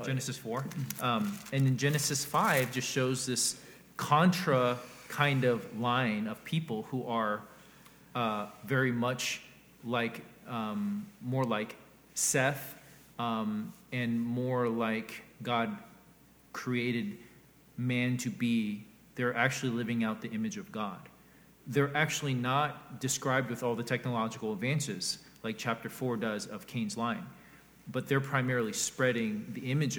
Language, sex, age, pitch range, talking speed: English, male, 40-59, 120-165 Hz, 130 wpm